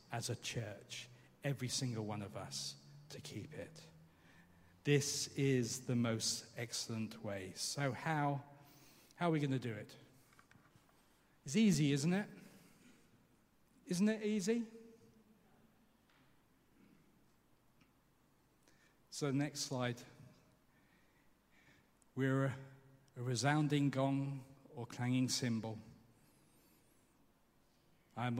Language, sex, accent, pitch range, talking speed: English, male, British, 115-140 Hz, 95 wpm